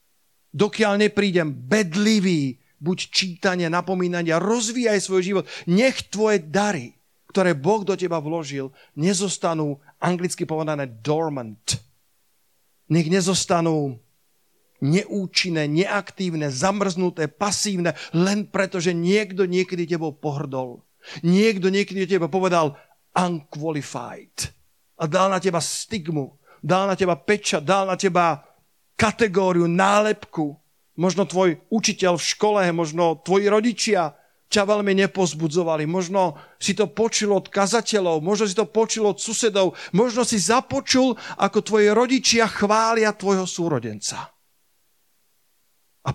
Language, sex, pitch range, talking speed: Slovak, male, 150-200 Hz, 110 wpm